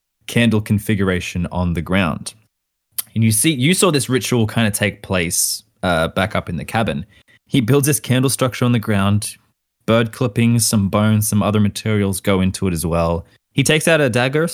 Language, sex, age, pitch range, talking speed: English, male, 20-39, 90-115 Hz, 195 wpm